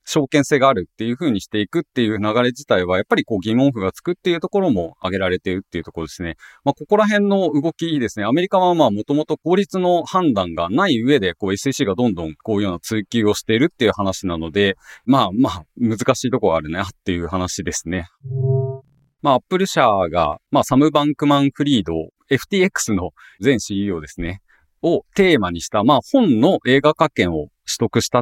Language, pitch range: Japanese, 90-140 Hz